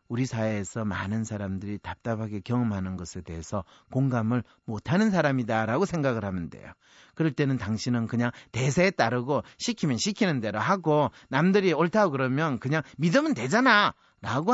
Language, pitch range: Korean, 120-190 Hz